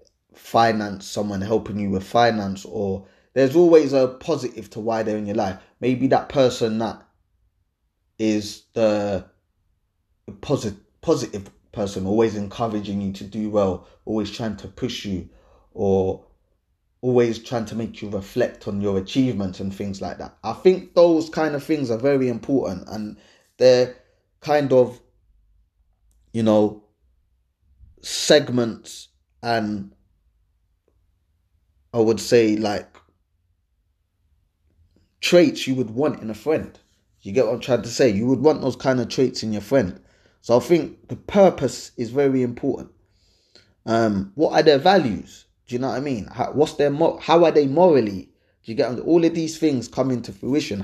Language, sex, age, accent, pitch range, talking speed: English, male, 20-39, British, 95-130 Hz, 155 wpm